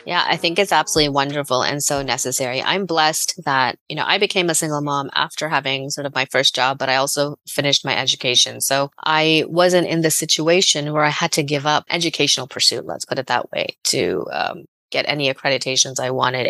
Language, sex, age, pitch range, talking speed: English, female, 30-49, 135-165 Hz, 210 wpm